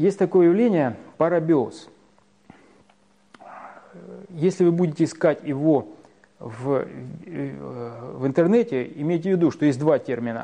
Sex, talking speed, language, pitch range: male, 110 wpm, Russian, 130-170 Hz